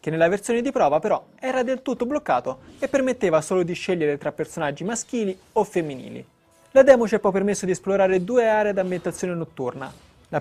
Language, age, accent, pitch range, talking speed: Italian, 20-39, native, 160-210 Hz, 190 wpm